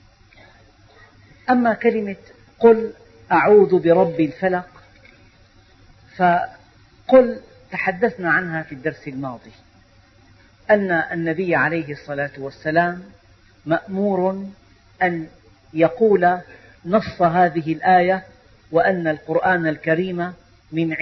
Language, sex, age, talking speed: Arabic, female, 50-69, 75 wpm